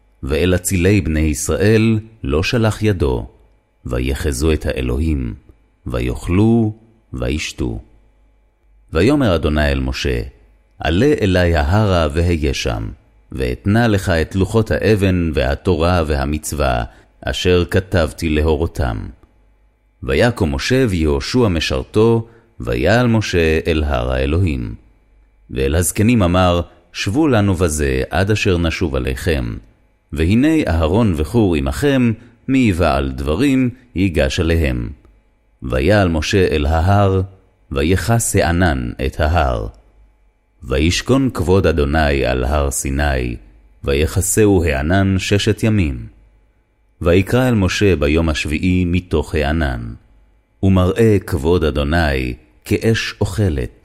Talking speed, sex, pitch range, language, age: 100 wpm, male, 75-105 Hz, Hebrew, 30-49